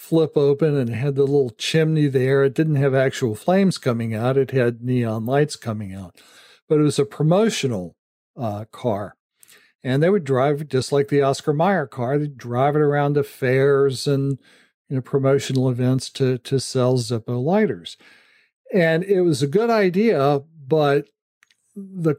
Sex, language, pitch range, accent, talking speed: male, English, 125-155 Hz, American, 170 wpm